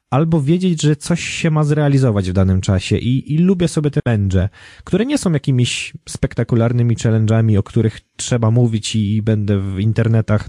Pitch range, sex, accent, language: 105-140 Hz, male, native, Polish